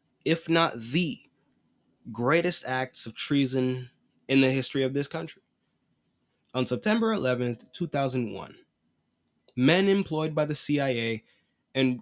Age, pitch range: 20-39, 125-175 Hz